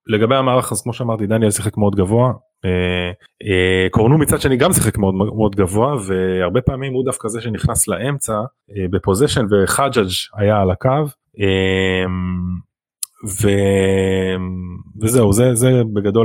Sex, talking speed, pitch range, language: male, 120 wpm, 95-120 Hz, Hebrew